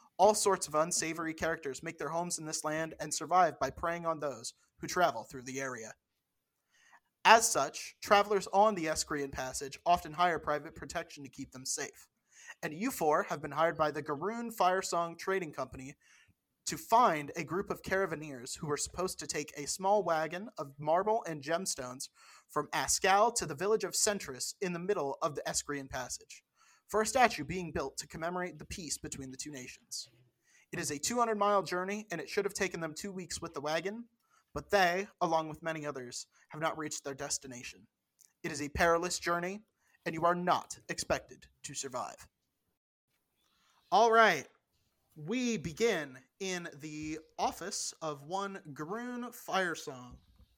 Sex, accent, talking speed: male, American, 170 wpm